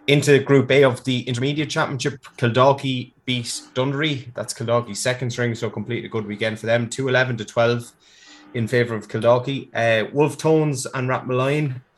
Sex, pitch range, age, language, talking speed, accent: male, 110-130 Hz, 20-39, English, 165 wpm, Irish